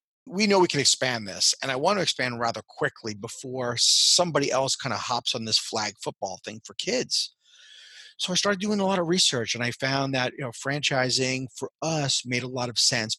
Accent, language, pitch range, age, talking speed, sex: American, English, 120-140 Hz, 30-49, 220 wpm, male